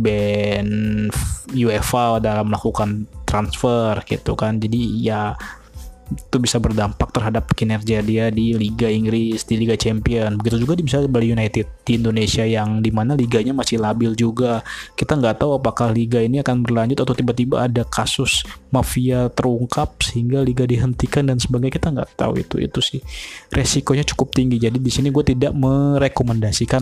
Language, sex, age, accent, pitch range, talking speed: Indonesian, male, 20-39, native, 110-130 Hz, 155 wpm